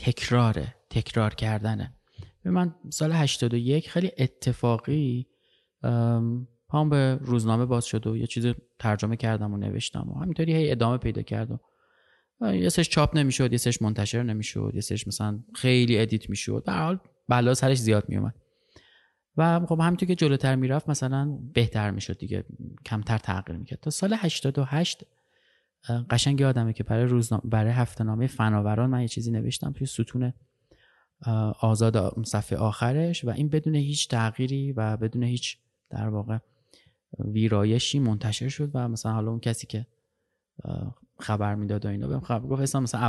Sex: male